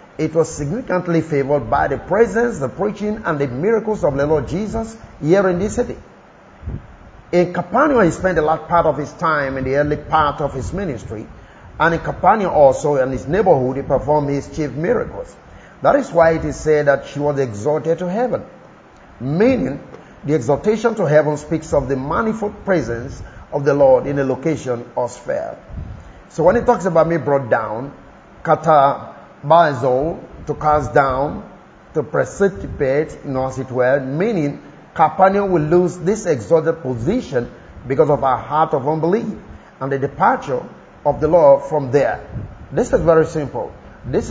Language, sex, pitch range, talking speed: English, male, 145-185 Hz, 170 wpm